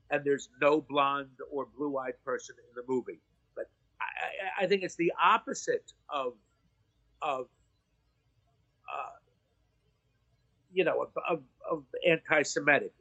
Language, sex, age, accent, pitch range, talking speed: English, male, 50-69, American, 140-200 Hz, 115 wpm